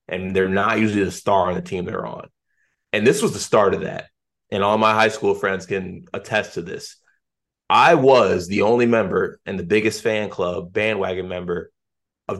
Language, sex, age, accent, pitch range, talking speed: English, male, 20-39, American, 95-125 Hz, 200 wpm